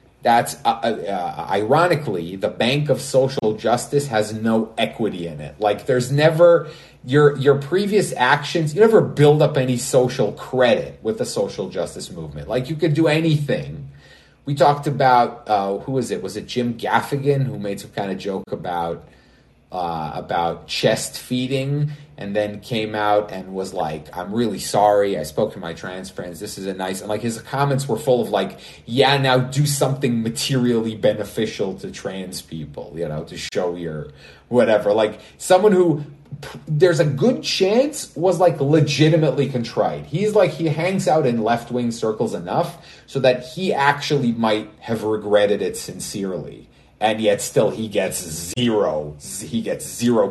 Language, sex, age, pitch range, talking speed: English, male, 30-49, 105-150 Hz, 170 wpm